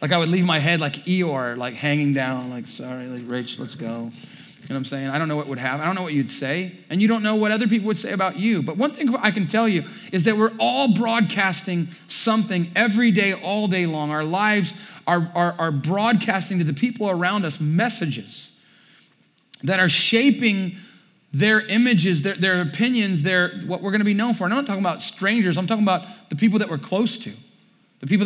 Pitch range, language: 160-220 Hz, English